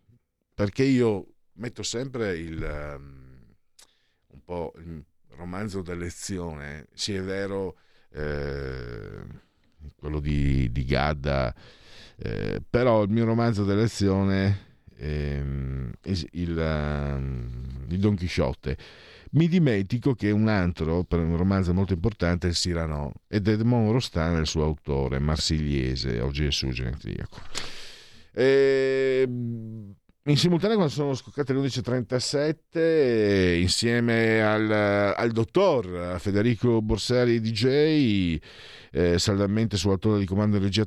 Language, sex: Italian, male